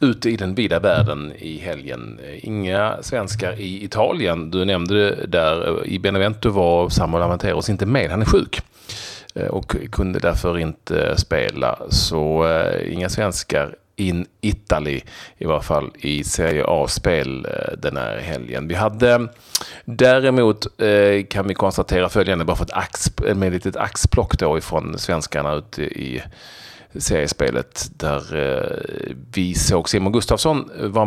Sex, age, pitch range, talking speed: male, 30-49, 85-105 Hz, 145 wpm